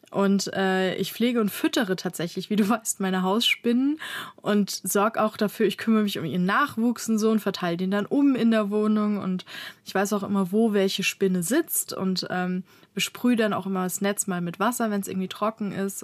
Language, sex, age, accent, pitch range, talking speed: German, female, 20-39, German, 190-220 Hz, 210 wpm